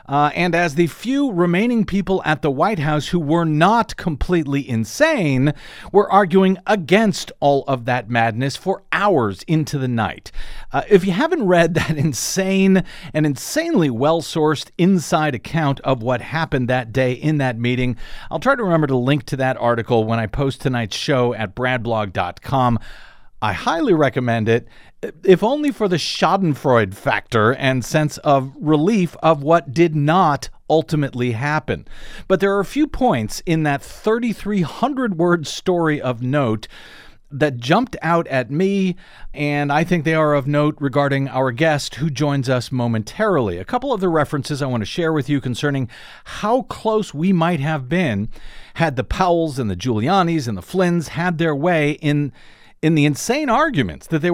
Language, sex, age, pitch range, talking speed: English, male, 40-59, 130-185 Hz, 170 wpm